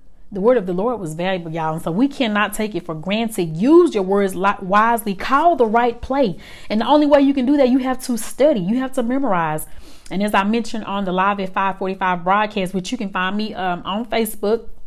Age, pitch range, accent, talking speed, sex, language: 30-49, 185-240 Hz, American, 235 wpm, female, English